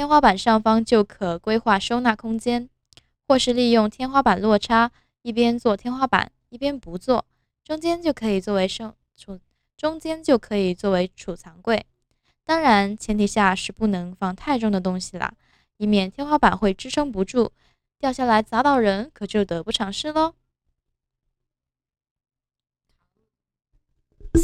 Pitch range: 195-255 Hz